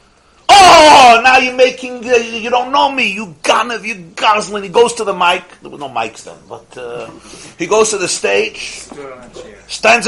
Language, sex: English, male